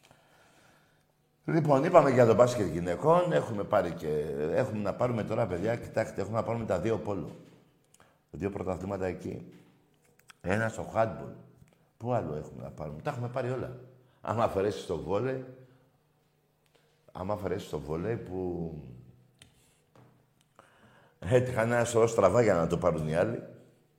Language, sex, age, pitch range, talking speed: Greek, male, 60-79, 100-145 Hz, 155 wpm